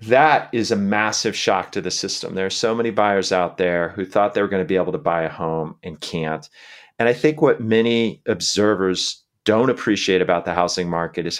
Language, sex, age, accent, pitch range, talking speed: English, male, 30-49, American, 90-120 Hz, 215 wpm